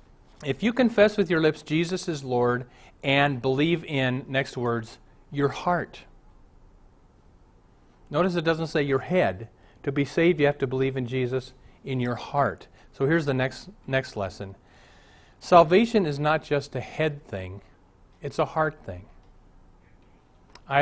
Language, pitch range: English, 125-160 Hz